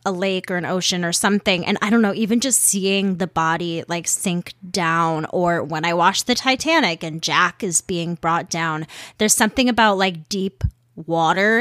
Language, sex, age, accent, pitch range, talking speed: English, female, 20-39, American, 175-225 Hz, 190 wpm